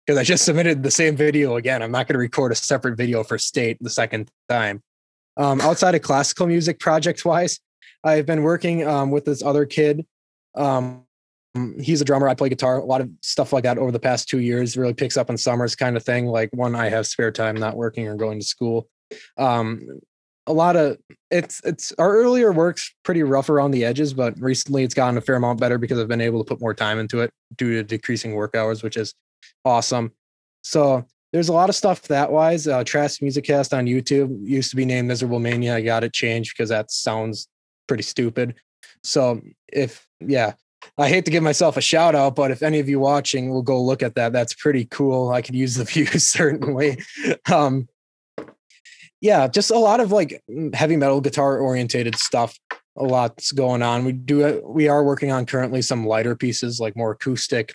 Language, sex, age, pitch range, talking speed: English, male, 20-39, 115-145 Hz, 210 wpm